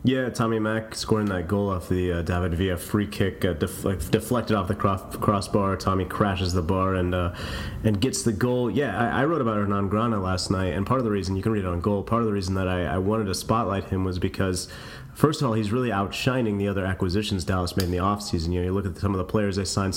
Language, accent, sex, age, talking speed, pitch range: English, American, male, 30-49, 265 wpm, 90-110 Hz